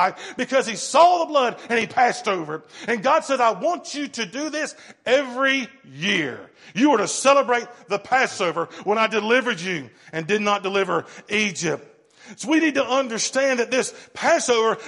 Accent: American